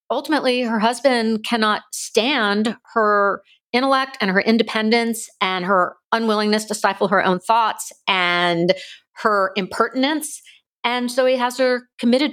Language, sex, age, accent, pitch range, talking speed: English, female, 50-69, American, 180-250 Hz, 130 wpm